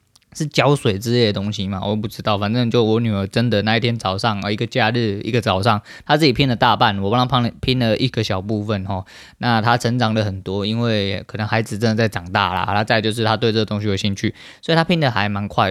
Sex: male